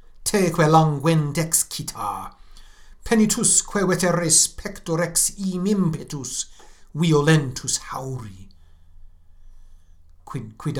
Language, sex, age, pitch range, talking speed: English, male, 60-79, 85-145 Hz, 80 wpm